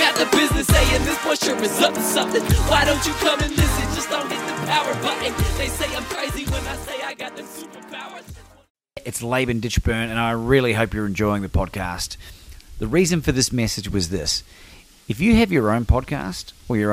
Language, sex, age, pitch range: English, male, 30-49, 95-120 Hz